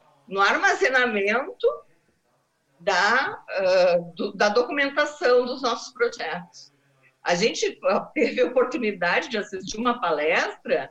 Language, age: Portuguese, 50-69